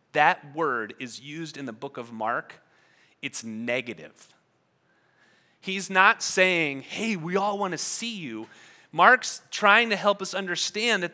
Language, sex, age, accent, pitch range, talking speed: English, male, 30-49, American, 150-200 Hz, 150 wpm